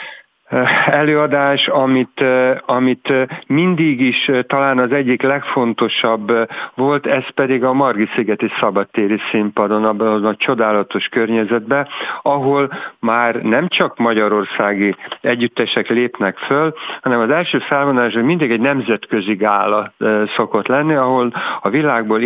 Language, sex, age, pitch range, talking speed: Hungarian, male, 50-69, 110-135 Hz, 115 wpm